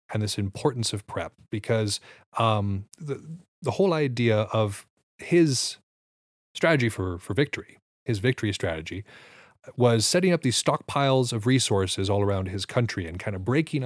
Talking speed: 150 wpm